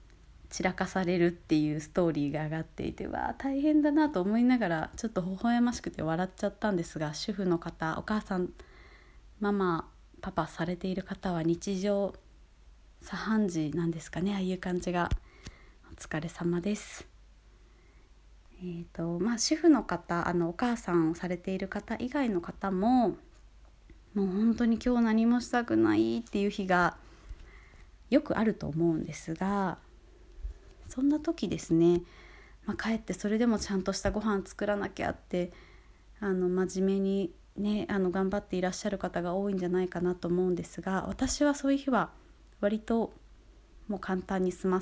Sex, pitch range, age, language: female, 170-215 Hz, 20-39, Japanese